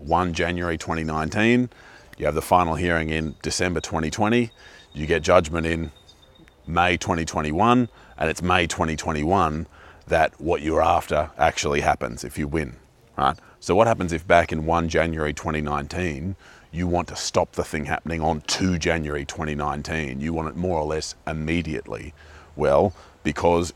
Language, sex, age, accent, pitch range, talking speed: English, male, 30-49, Australian, 75-90 Hz, 150 wpm